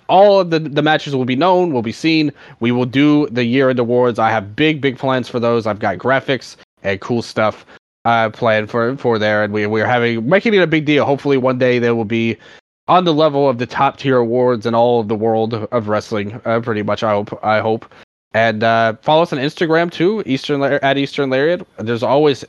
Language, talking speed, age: English, 230 wpm, 20-39